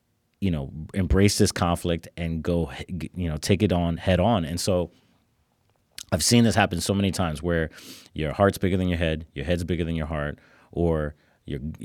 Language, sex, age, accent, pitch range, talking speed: English, male, 30-49, American, 80-100 Hz, 190 wpm